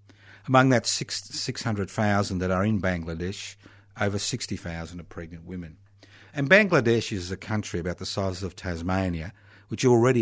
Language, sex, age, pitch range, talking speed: English, male, 50-69, 100-130 Hz, 140 wpm